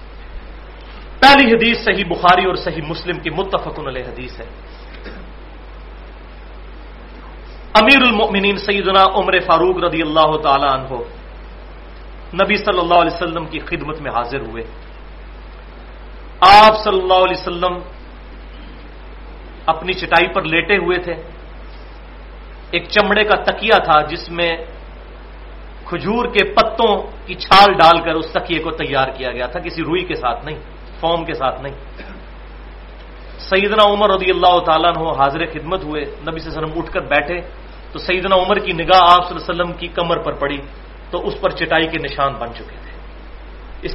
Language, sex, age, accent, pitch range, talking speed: English, male, 40-59, Indian, 155-190 Hz, 130 wpm